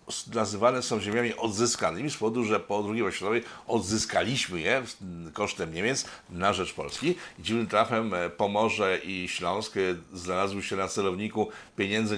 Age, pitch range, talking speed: 50-69, 100-120 Hz, 135 wpm